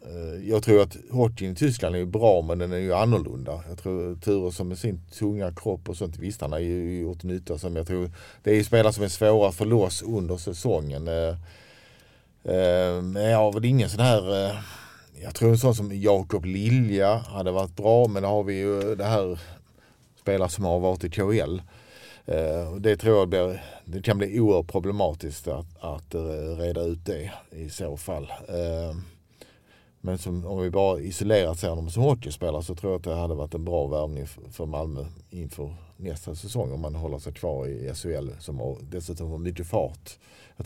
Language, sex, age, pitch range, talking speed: Swedish, male, 50-69, 85-100 Hz, 185 wpm